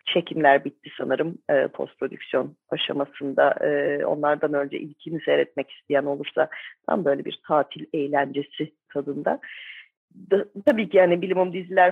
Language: Turkish